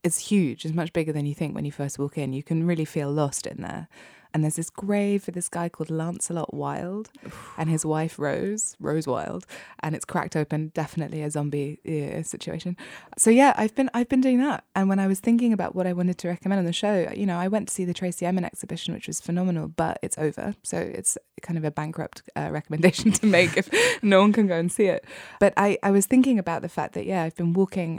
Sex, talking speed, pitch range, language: female, 245 wpm, 155-190 Hz, English